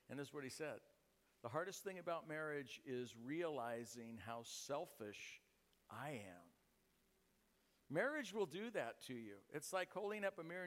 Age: 50-69